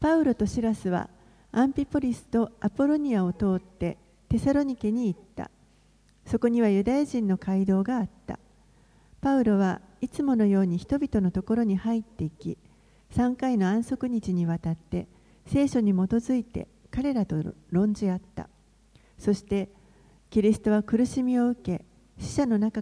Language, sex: Japanese, female